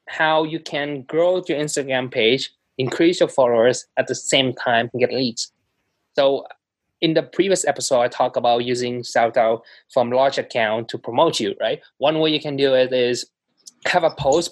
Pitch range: 130-165 Hz